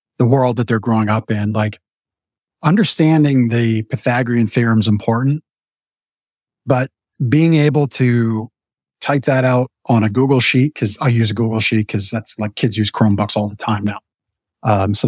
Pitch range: 115-150 Hz